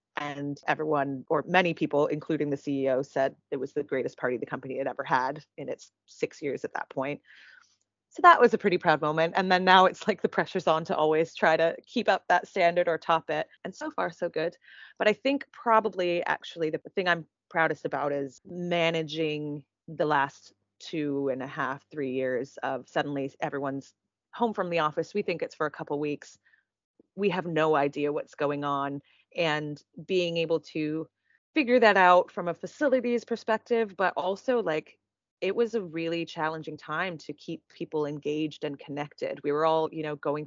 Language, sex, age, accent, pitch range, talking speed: English, female, 30-49, American, 150-185 Hz, 195 wpm